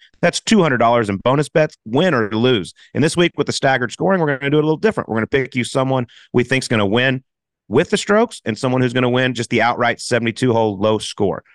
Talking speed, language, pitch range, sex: 260 wpm, English, 115-145 Hz, male